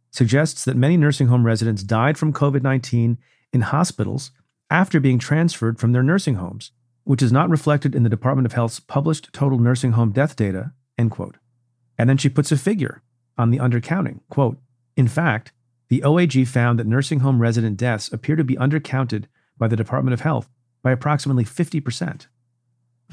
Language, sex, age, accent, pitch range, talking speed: English, male, 40-59, American, 115-135 Hz, 175 wpm